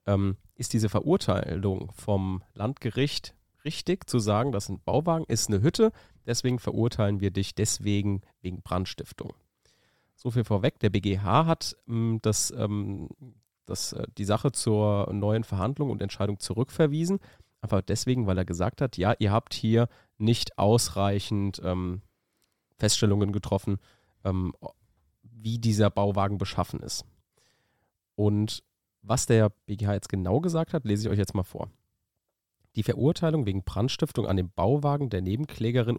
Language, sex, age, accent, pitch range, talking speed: German, male, 30-49, German, 100-125 Hz, 140 wpm